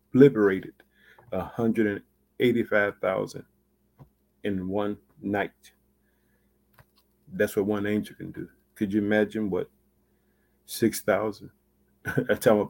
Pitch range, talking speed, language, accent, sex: 100-125 Hz, 105 wpm, English, American, male